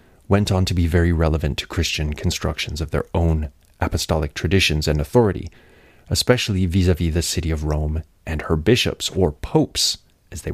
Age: 30-49